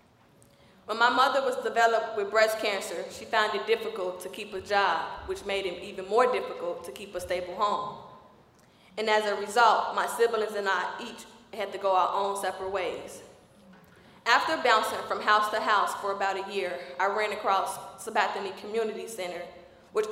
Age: 20-39